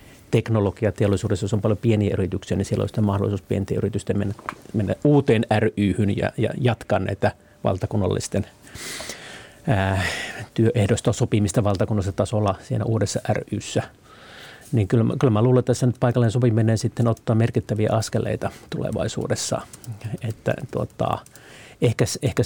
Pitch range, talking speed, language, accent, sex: 105-125 Hz, 130 wpm, Finnish, native, male